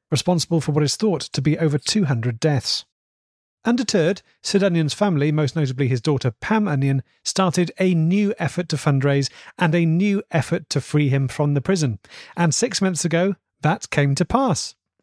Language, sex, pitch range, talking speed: English, male, 135-180 Hz, 175 wpm